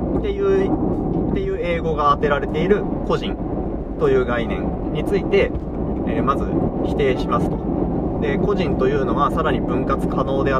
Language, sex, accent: Japanese, male, native